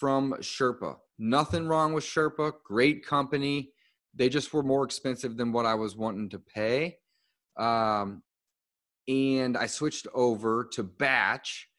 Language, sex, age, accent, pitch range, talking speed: English, male, 30-49, American, 115-150 Hz, 135 wpm